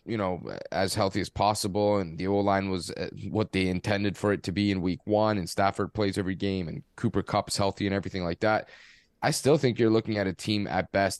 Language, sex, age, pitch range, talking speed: English, male, 20-39, 95-105 Hz, 235 wpm